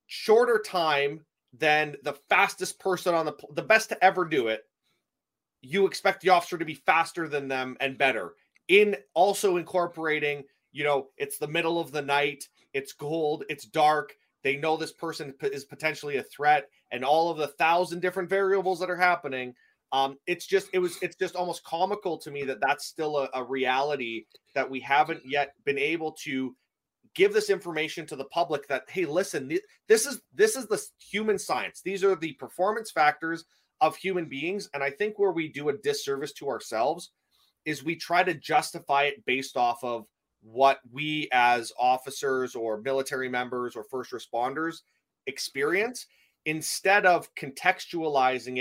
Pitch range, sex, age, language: 140-185 Hz, male, 30-49, English